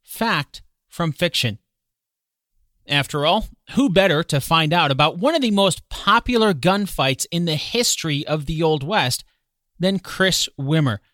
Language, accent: English, American